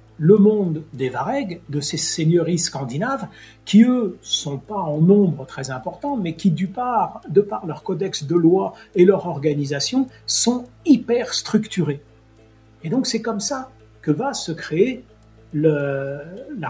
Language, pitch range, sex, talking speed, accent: French, 140-195 Hz, male, 155 wpm, French